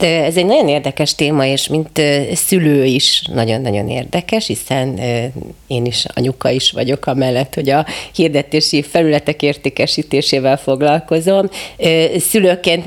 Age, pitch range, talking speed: 30-49, 115-145 Hz, 120 wpm